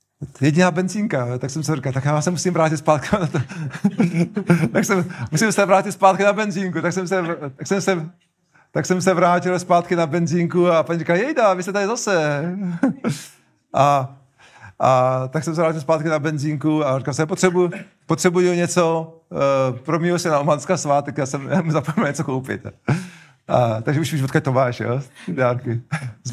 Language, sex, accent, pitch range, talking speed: Czech, male, native, 130-170 Hz, 135 wpm